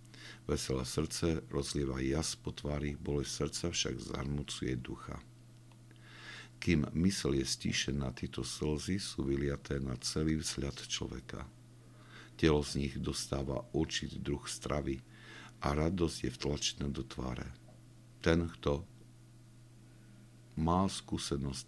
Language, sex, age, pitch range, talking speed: Slovak, male, 60-79, 70-85 Hz, 110 wpm